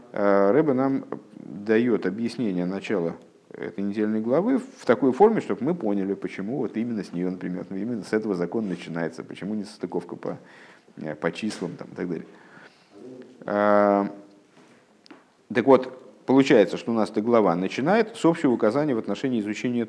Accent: native